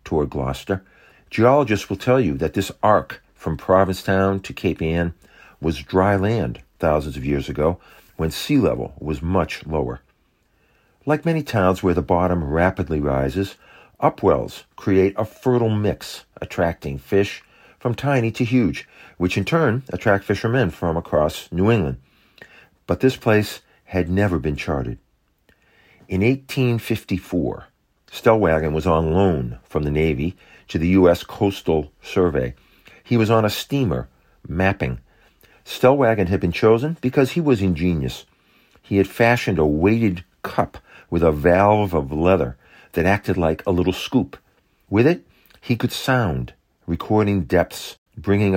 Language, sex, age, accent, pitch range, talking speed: English, male, 50-69, American, 80-105 Hz, 140 wpm